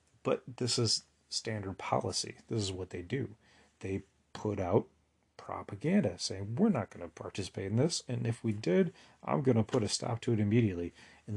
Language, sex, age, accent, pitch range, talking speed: English, male, 30-49, American, 100-115 Hz, 190 wpm